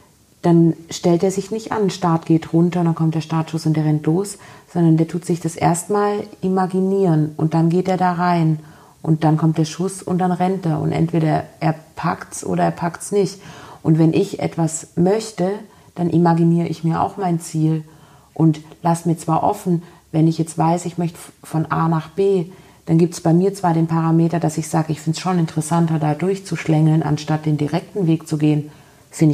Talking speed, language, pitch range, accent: 205 wpm, German, 155-175 Hz, German